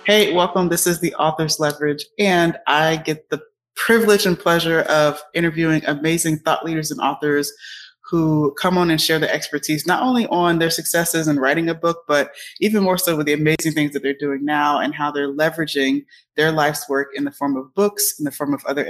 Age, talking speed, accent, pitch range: 20-39, 210 wpm, American, 150-170 Hz